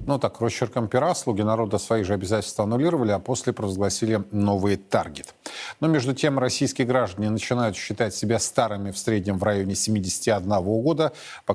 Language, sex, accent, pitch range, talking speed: Russian, male, native, 105-135 Hz, 160 wpm